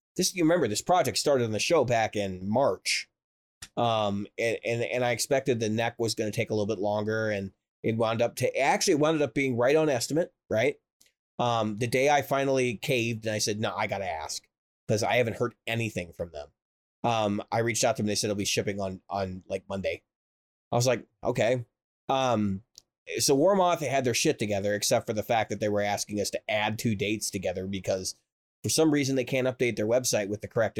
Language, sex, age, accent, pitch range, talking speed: English, male, 30-49, American, 105-130 Hz, 230 wpm